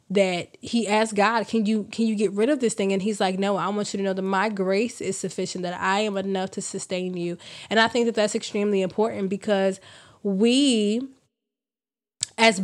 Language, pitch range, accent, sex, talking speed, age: English, 185-210 Hz, American, female, 210 wpm, 20-39